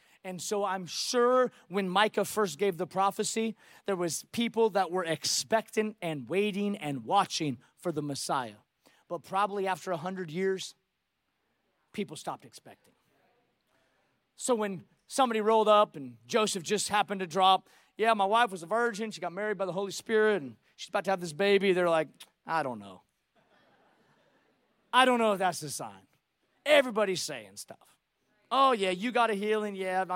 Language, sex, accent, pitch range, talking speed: English, male, American, 165-215 Hz, 165 wpm